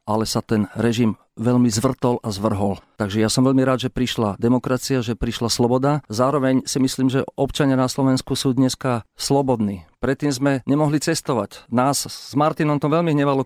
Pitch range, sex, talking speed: 120-145 Hz, male, 175 wpm